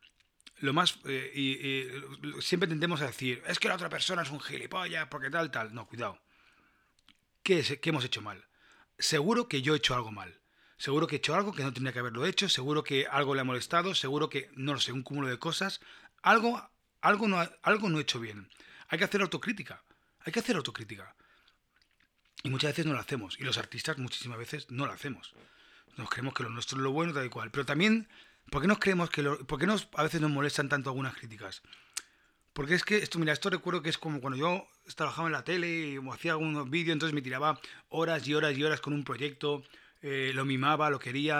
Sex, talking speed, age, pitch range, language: male, 205 wpm, 30-49, 135-170 Hz, Spanish